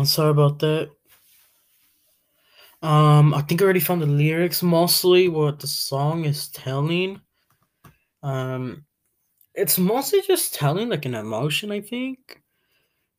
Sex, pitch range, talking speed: male, 130-165 Hz, 130 wpm